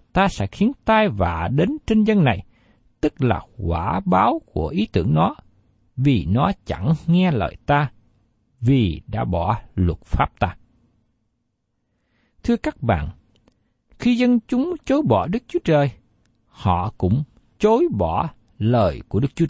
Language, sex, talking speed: Vietnamese, male, 150 wpm